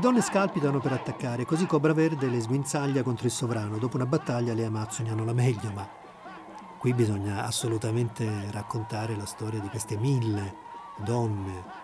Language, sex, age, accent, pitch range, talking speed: Italian, male, 40-59, native, 105-125 Hz, 155 wpm